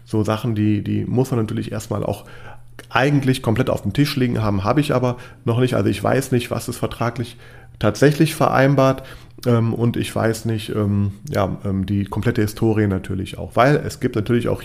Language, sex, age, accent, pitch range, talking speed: German, male, 30-49, German, 105-125 Hz, 185 wpm